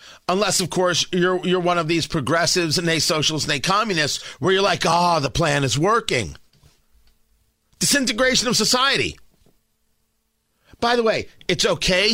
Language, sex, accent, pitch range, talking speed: English, male, American, 155-225 Hz, 160 wpm